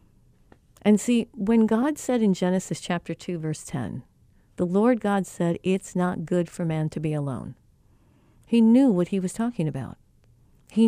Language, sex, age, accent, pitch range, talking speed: English, female, 50-69, American, 165-235 Hz, 170 wpm